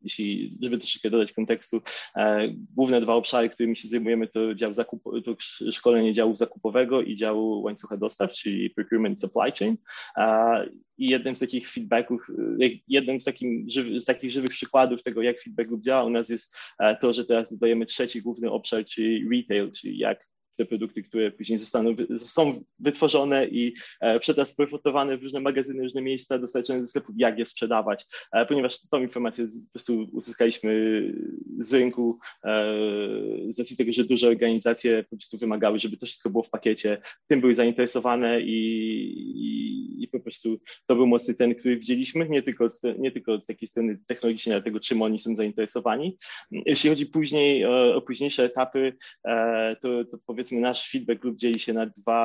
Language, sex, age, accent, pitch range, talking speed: Polish, male, 20-39, native, 115-130 Hz, 180 wpm